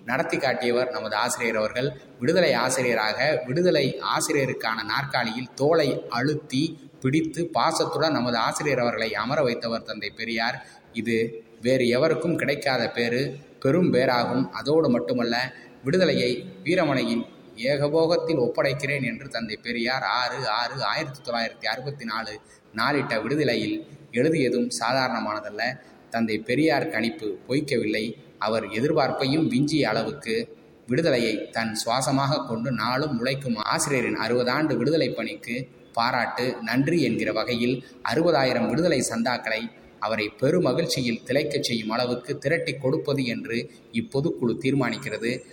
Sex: male